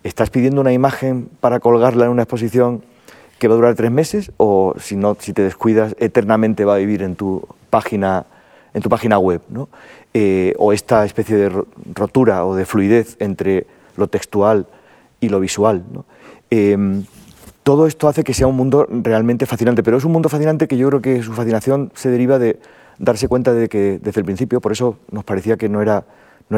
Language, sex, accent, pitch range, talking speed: Spanish, male, Spanish, 95-115 Hz, 200 wpm